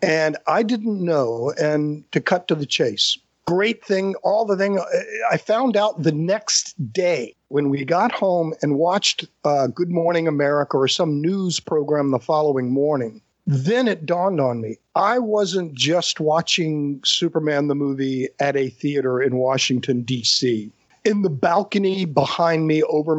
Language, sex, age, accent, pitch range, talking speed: English, male, 50-69, American, 135-175 Hz, 160 wpm